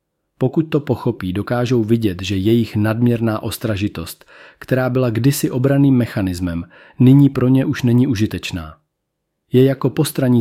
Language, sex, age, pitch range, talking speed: Czech, male, 40-59, 100-125 Hz, 135 wpm